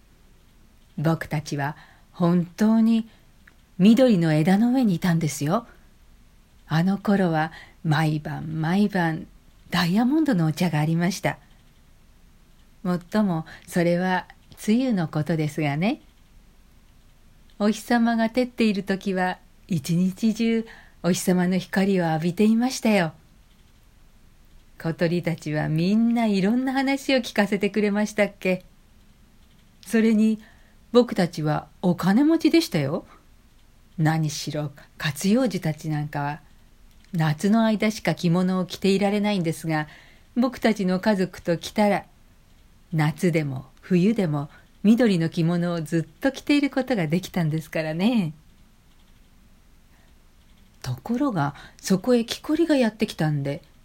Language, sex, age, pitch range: Japanese, female, 50-69, 155-215 Hz